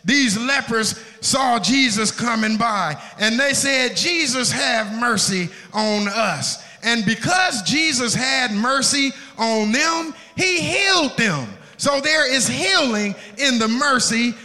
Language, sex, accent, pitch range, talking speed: English, male, American, 220-285 Hz, 130 wpm